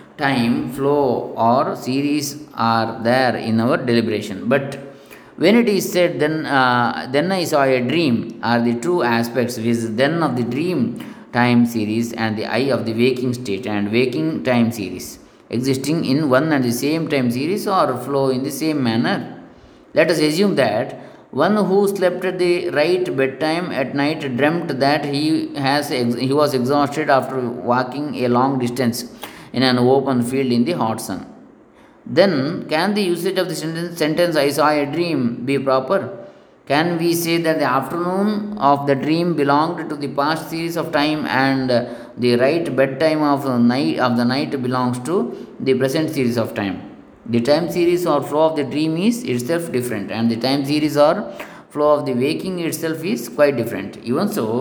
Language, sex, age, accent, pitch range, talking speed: English, male, 20-39, Indian, 120-155 Hz, 180 wpm